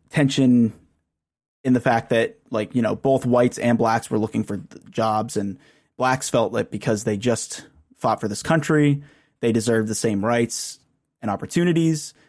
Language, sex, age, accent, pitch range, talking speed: English, male, 20-39, American, 110-150 Hz, 165 wpm